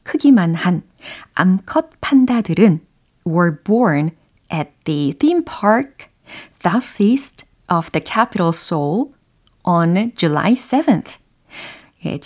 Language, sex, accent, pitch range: Korean, female, native, 170-255 Hz